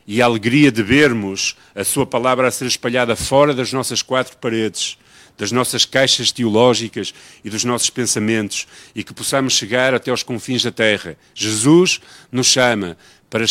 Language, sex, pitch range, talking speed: Portuguese, male, 95-125 Hz, 165 wpm